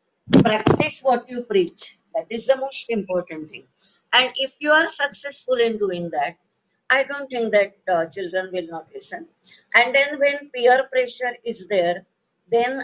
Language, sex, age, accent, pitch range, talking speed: Hindi, female, 50-69, native, 190-245 Hz, 165 wpm